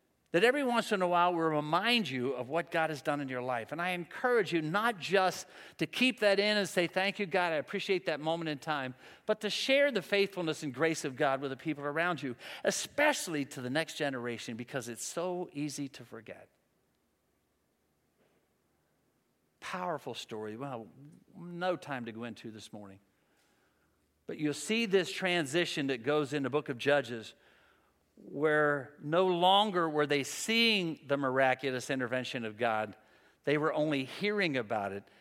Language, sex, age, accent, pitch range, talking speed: English, male, 50-69, American, 120-170 Hz, 175 wpm